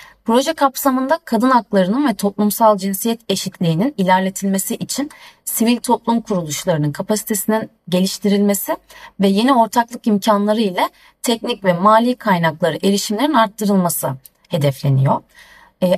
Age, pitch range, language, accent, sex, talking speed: 30-49, 180-230 Hz, Turkish, native, female, 105 wpm